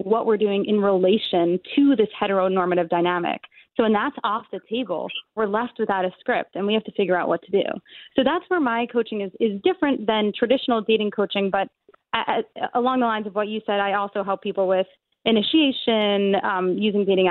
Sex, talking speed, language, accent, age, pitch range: female, 210 wpm, English, American, 20-39, 195-240 Hz